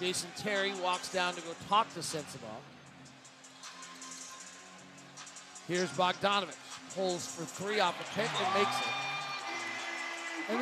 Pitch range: 195-255 Hz